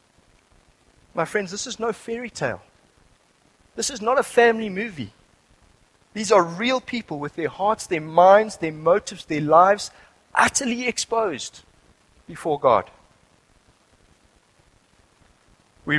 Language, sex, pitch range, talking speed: English, male, 140-195 Hz, 115 wpm